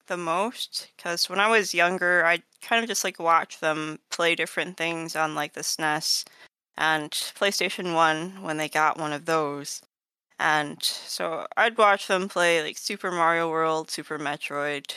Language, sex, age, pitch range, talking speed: English, female, 20-39, 160-200 Hz, 170 wpm